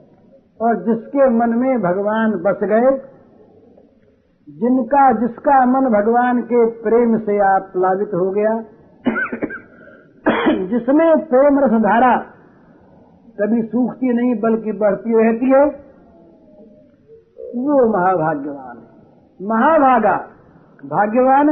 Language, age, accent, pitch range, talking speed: Hindi, 60-79, native, 220-275 Hz, 90 wpm